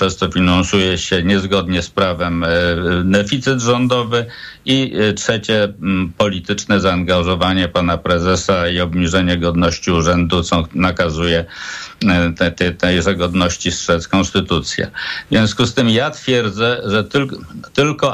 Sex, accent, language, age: male, native, Polish, 50-69